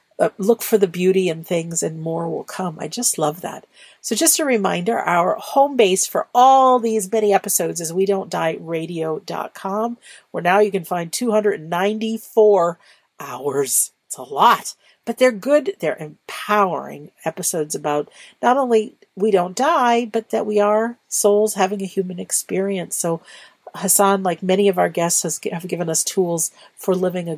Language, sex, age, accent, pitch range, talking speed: English, female, 50-69, American, 165-215 Hz, 170 wpm